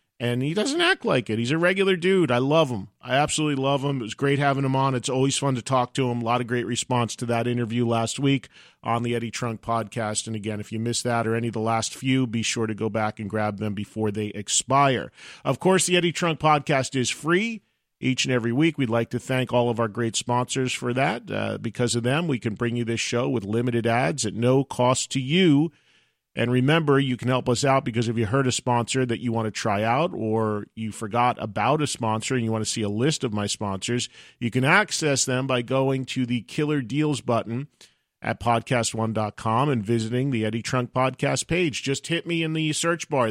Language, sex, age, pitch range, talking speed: English, male, 40-59, 115-135 Hz, 235 wpm